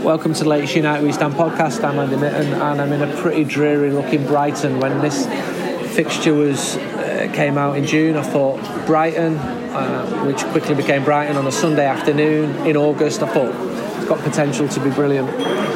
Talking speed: 190 wpm